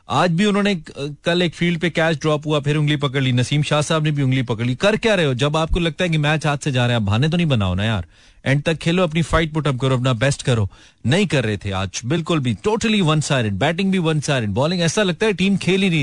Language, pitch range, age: Hindi, 115-160 Hz, 30-49